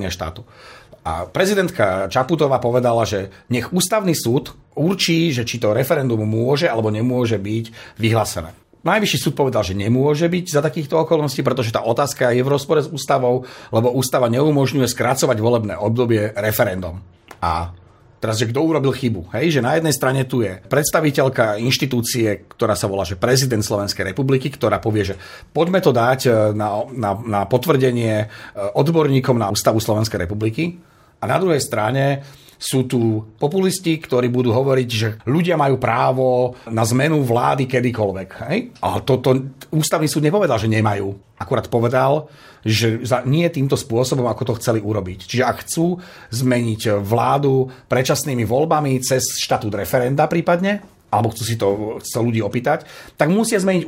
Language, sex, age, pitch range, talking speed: Slovak, male, 40-59, 110-155 Hz, 150 wpm